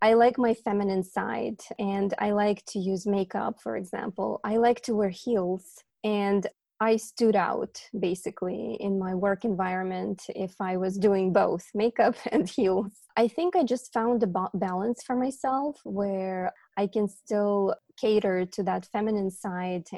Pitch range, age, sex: 190-220 Hz, 20-39, female